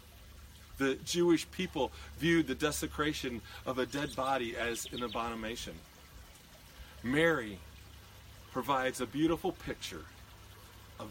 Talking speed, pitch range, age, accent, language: 105 wpm, 100-155 Hz, 40-59, American, English